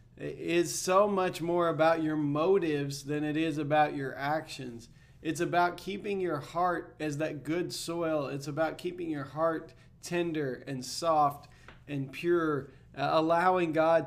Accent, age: American, 20-39